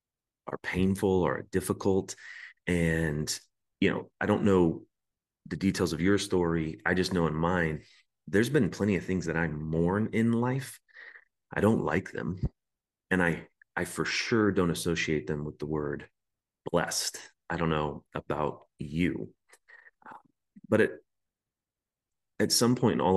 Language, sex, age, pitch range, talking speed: English, male, 30-49, 80-95 Hz, 155 wpm